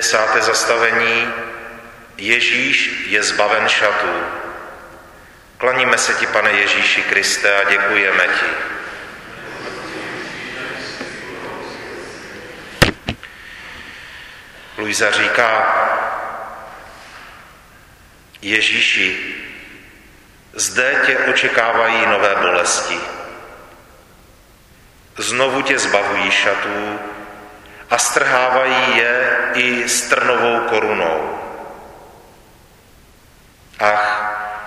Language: Czech